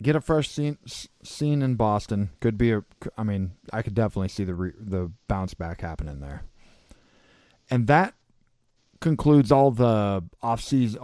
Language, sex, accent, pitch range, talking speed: English, male, American, 100-125 Hz, 160 wpm